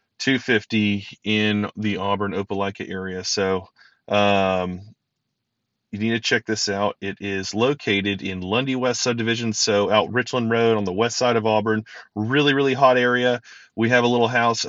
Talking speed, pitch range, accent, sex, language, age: 165 wpm, 100-125 Hz, American, male, English, 30-49